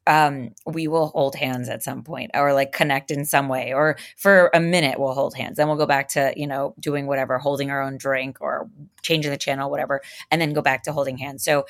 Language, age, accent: English, 20-39, American